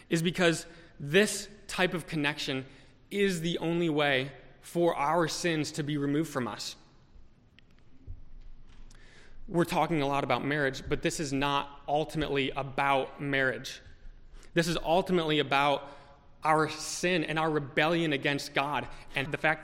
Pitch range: 140-165 Hz